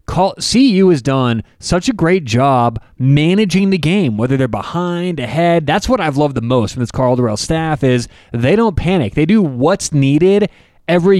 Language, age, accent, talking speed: English, 30-49, American, 180 wpm